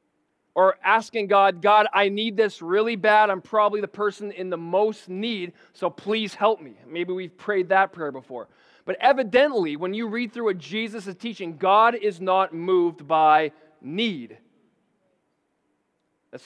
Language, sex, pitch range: English, male, 180-220 Hz